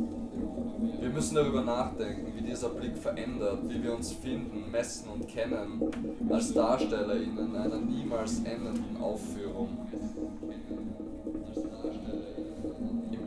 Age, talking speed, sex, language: 20-39, 105 wpm, male, German